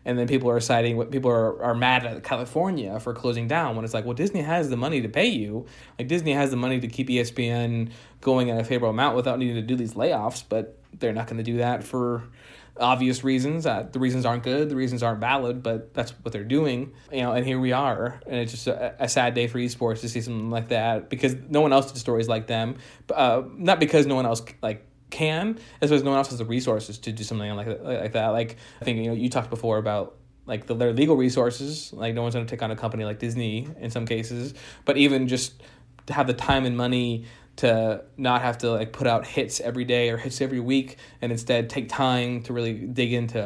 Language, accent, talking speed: English, American, 245 wpm